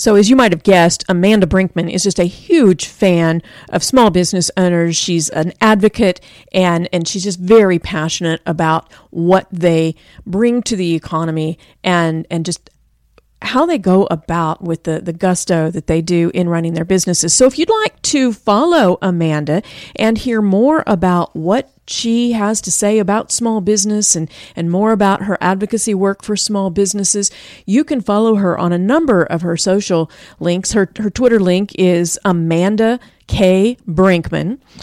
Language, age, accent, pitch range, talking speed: English, 40-59, American, 170-205 Hz, 170 wpm